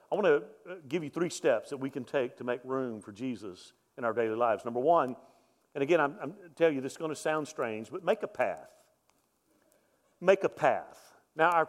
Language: English